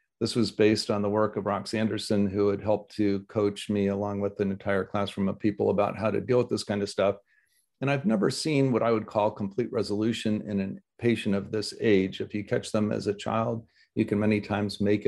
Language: English